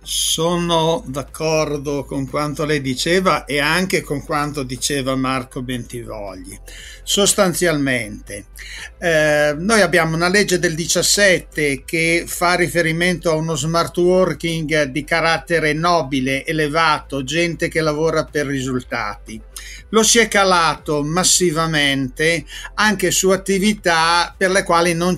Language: Italian